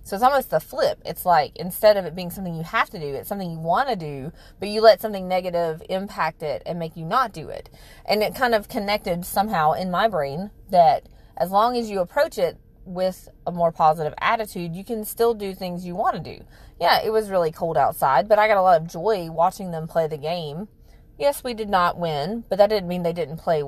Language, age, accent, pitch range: English, 30-49, American, 170-220 Hz